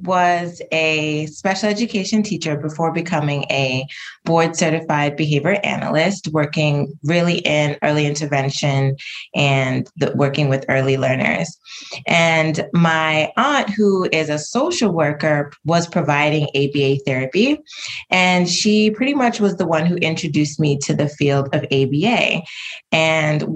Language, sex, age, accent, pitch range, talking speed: English, female, 20-39, American, 145-190 Hz, 125 wpm